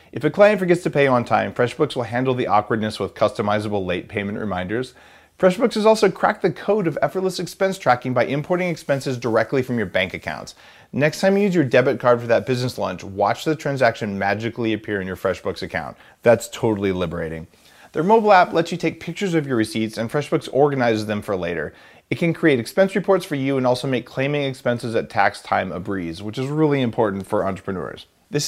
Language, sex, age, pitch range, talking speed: English, male, 30-49, 105-160 Hz, 210 wpm